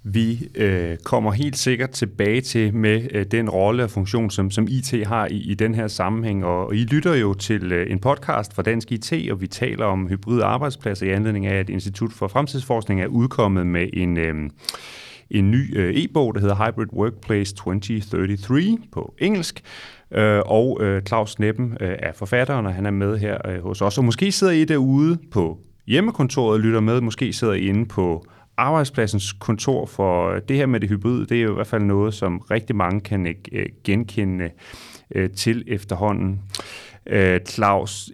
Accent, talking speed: native, 185 wpm